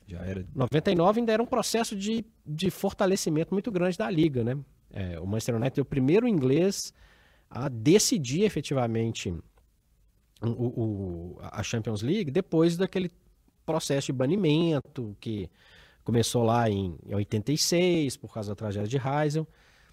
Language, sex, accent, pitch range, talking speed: Portuguese, male, Brazilian, 105-165 Hz, 140 wpm